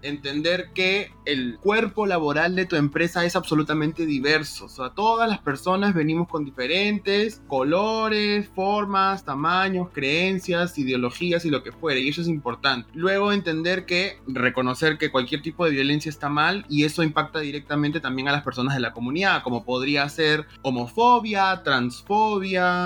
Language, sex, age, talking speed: Spanish, male, 20-39, 155 wpm